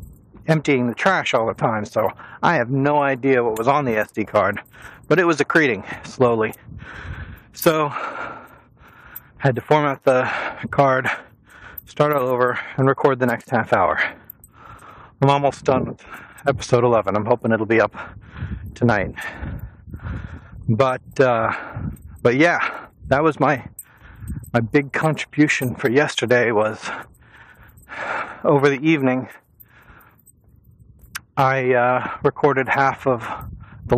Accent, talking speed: American, 125 wpm